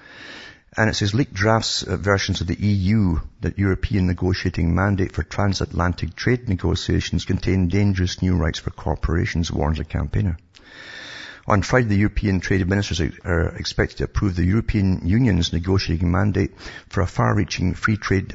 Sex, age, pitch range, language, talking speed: male, 50-69, 85-100 Hz, English, 150 wpm